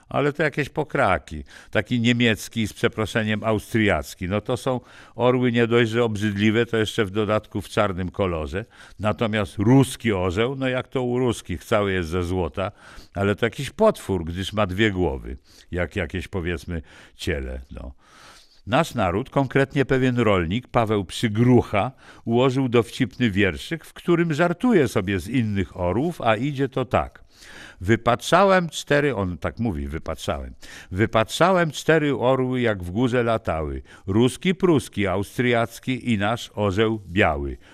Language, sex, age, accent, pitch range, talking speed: Polish, male, 60-79, native, 95-125 Hz, 140 wpm